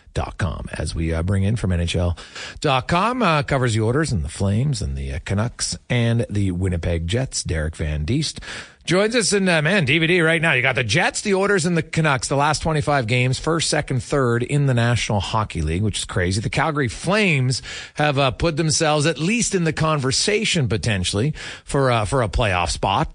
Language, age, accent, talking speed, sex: English, 40-59, American, 200 wpm, male